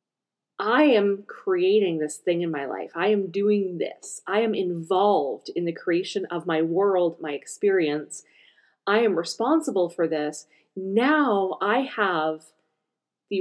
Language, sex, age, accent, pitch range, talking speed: English, female, 30-49, American, 175-260 Hz, 145 wpm